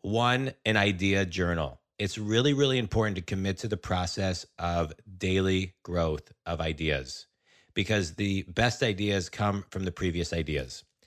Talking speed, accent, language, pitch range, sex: 145 wpm, American, English, 95-110 Hz, male